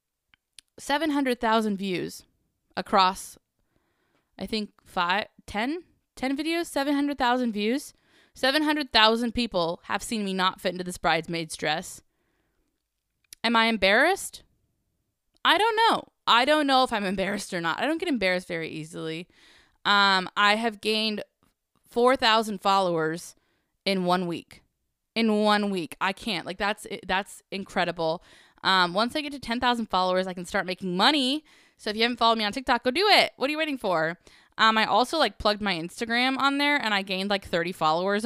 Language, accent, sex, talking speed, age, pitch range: English, American, female, 160 wpm, 20-39, 180-250 Hz